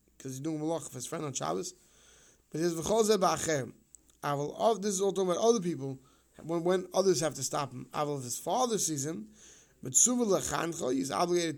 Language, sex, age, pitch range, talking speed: English, male, 20-39, 140-185 Hz, 180 wpm